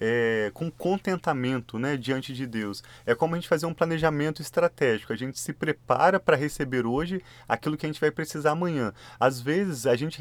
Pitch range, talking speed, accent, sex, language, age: 125-160 Hz, 195 wpm, Brazilian, male, Portuguese, 30-49